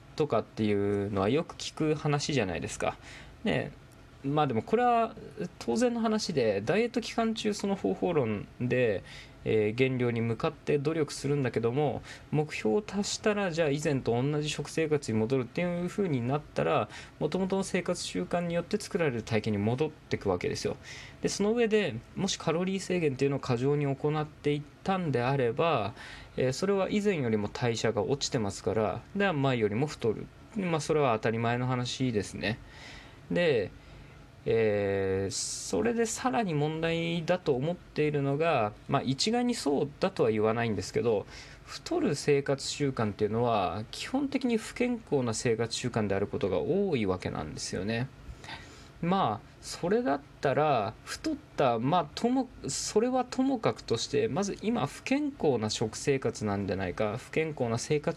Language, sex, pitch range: Japanese, male, 120-195 Hz